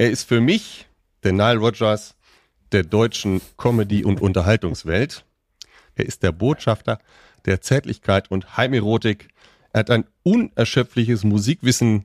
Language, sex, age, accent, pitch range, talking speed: German, male, 40-59, German, 100-145 Hz, 125 wpm